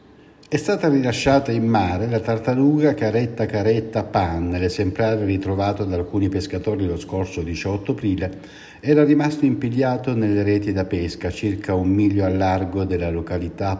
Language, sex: Italian, male